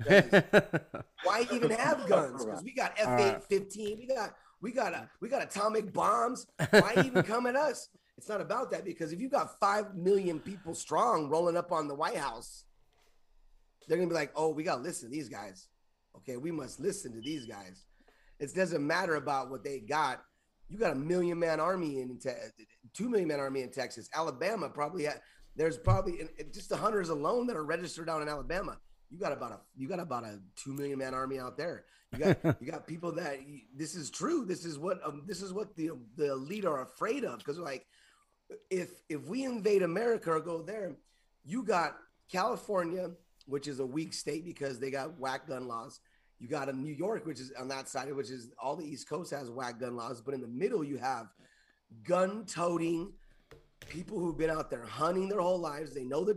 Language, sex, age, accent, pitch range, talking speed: English, male, 30-49, American, 135-185 Hz, 210 wpm